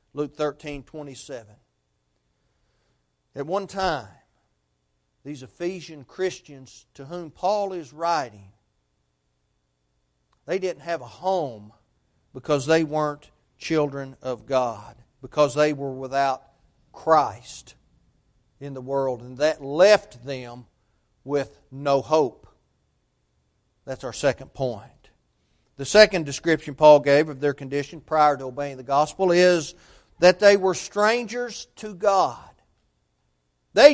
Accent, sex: American, male